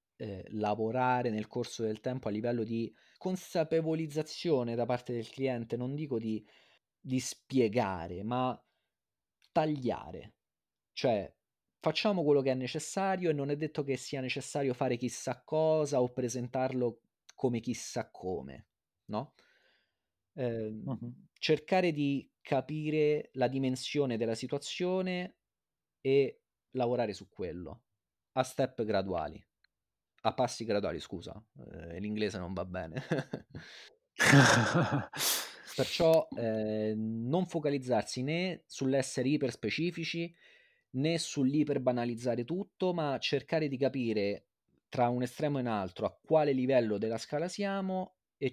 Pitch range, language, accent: 110-150 Hz, Italian, native